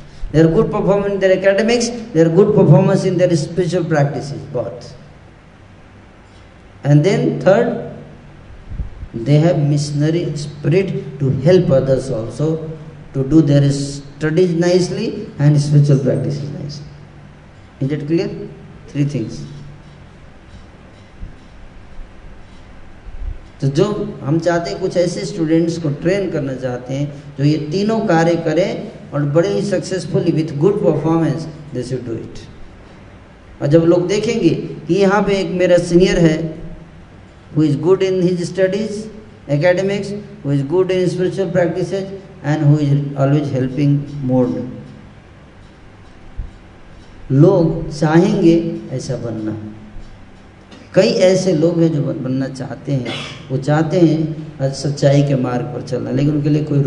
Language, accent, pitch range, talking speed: Hindi, native, 125-175 Hz, 130 wpm